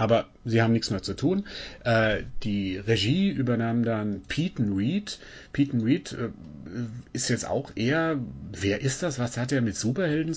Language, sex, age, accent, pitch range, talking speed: German, male, 40-59, German, 110-140 Hz, 170 wpm